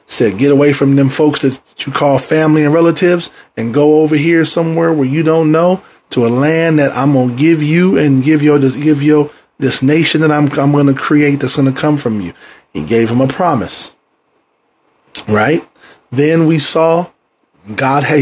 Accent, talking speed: American, 190 wpm